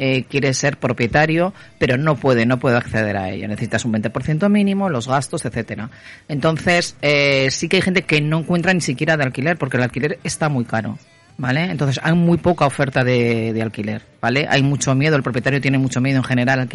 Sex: female